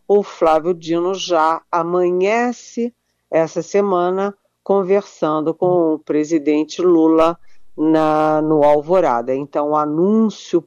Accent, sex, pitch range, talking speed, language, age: Brazilian, female, 155-190 Hz, 95 wpm, Portuguese, 50-69